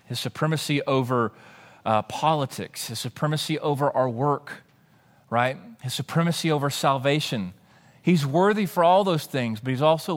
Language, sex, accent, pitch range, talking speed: English, male, American, 120-160 Hz, 140 wpm